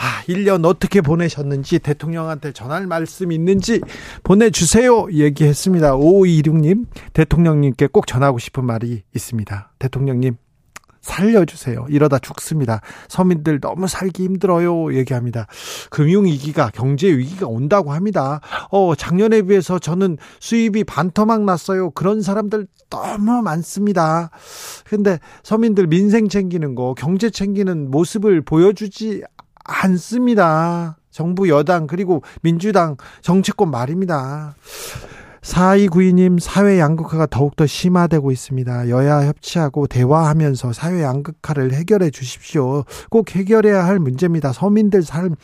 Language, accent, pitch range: Korean, native, 150-200 Hz